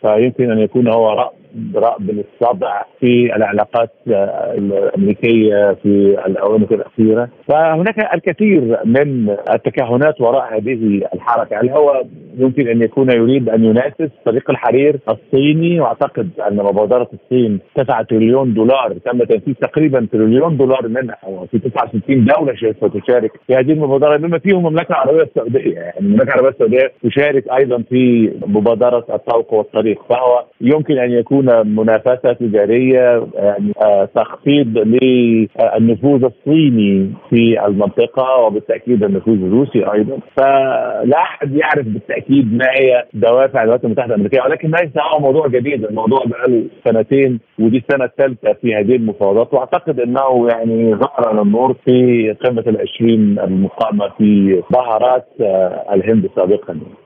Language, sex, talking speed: Arabic, male, 135 wpm